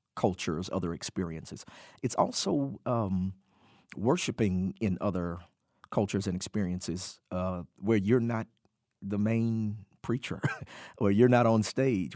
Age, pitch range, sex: 50-69, 95-110 Hz, male